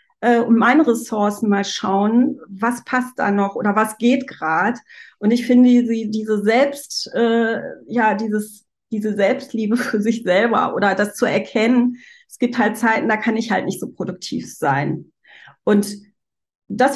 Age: 40-59